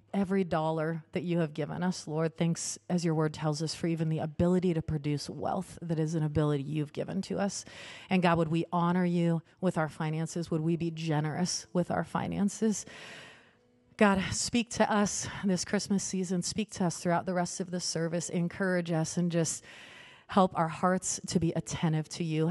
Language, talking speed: English, 195 wpm